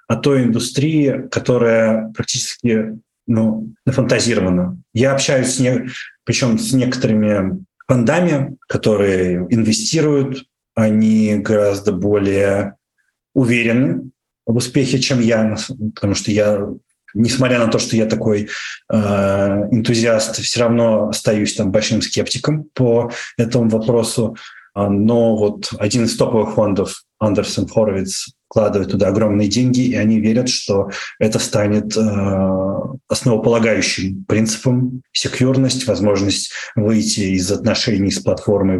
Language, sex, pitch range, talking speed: Russian, male, 105-125 Hz, 110 wpm